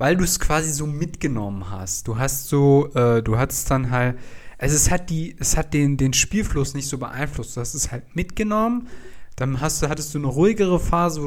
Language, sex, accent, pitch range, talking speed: German, male, German, 120-160 Hz, 220 wpm